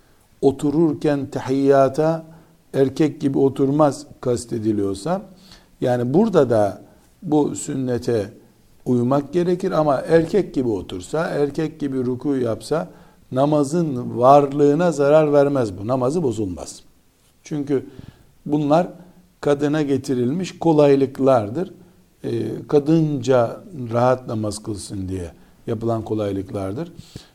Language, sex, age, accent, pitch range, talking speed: Turkish, male, 60-79, native, 115-150 Hz, 90 wpm